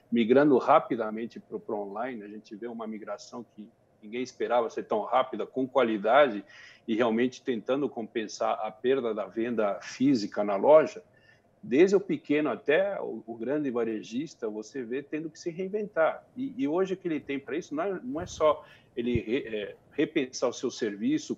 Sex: male